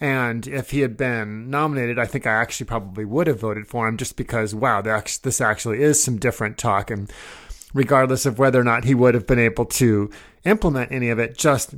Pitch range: 115-140 Hz